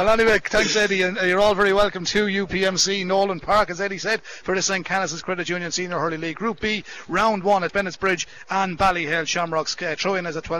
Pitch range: 160-185 Hz